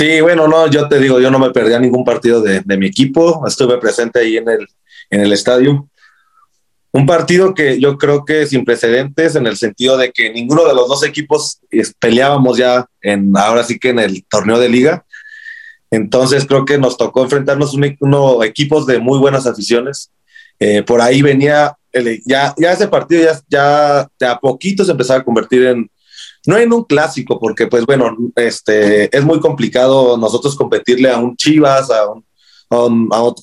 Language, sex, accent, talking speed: Spanish, male, Mexican, 195 wpm